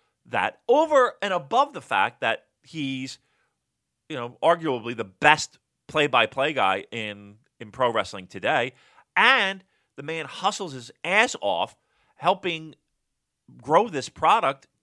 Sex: male